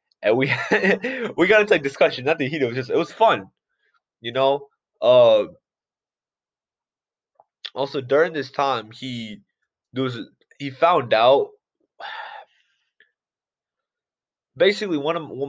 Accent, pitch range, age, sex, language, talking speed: American, 110-140 Hz, 20-39, male, English, 130 wpm